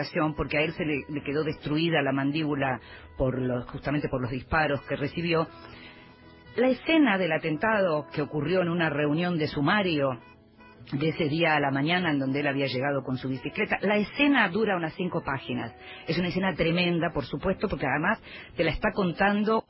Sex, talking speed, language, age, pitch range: female, 185 wpm, Spanish, 40-59, 140-195 Hz